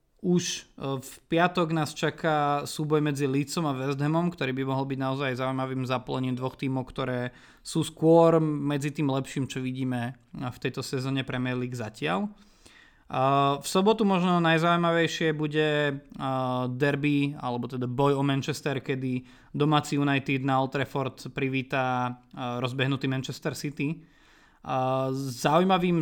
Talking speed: 130 wpm